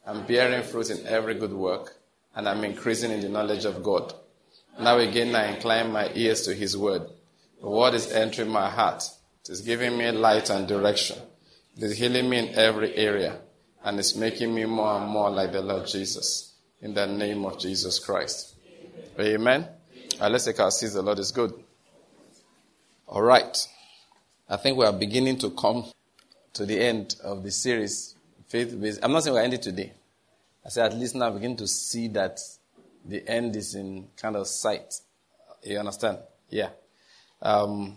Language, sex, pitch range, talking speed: English, male, 105-120 Hz, 180 wpm